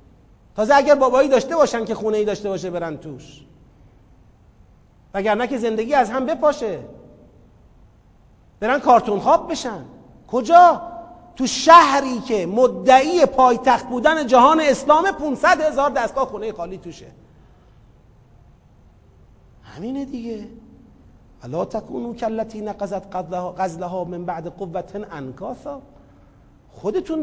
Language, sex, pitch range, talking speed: Persian, male, 220-310 Hz, 110 wpm